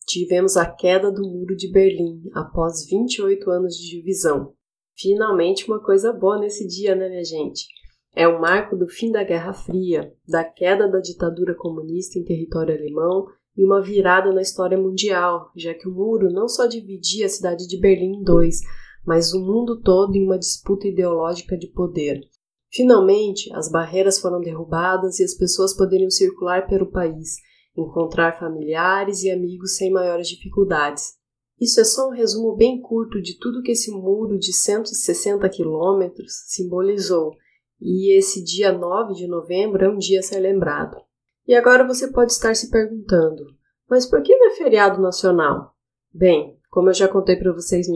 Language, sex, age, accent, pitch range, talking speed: Portuguese, female, 20-39, Brazilian, 175-200 Hz, 170 wpm